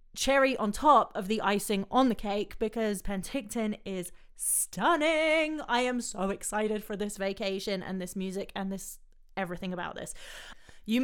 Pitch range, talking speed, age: 175-220 Hz, 160 wpm, 30-49